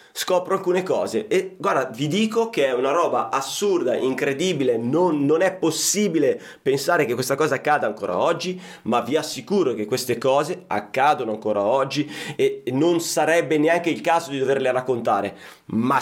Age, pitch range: 30-49, 145-215 Hz